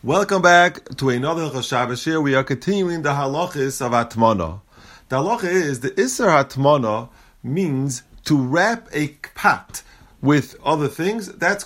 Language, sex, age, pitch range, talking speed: English, male, 30-49, 130-185 Hz, 140 wpm